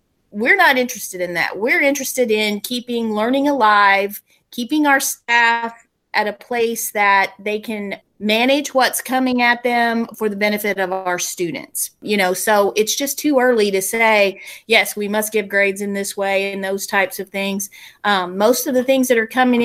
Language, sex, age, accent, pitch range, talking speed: English, female, 30-49, American, 200-240 Hz, 185 wpm